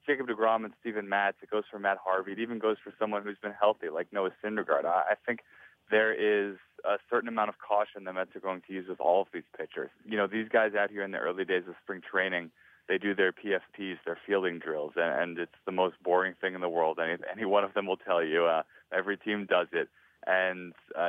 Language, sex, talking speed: English, male, 240 wpm